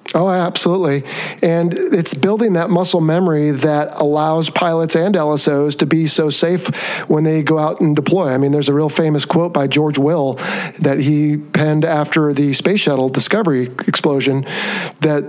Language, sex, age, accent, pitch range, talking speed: English, male, 50-69, American, 150-175 Hz, 170 wpm